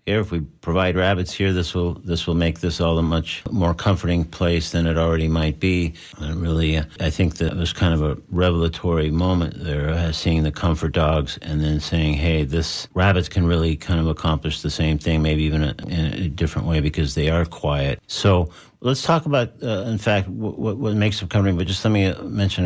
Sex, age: male, 50-69